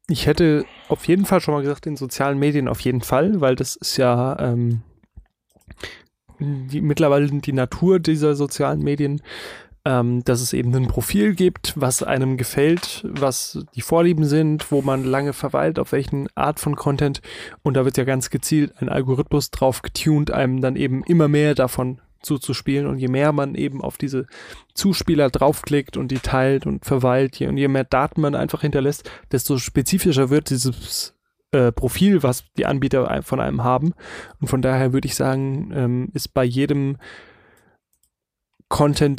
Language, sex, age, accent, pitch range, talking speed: German, male, 20-39, German, 130-150 Hz, 170 wpm